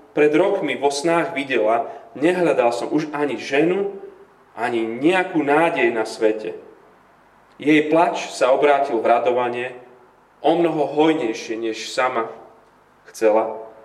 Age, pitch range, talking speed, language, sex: 40-59, 120-180 Hz, 115 wpm, Slovak, male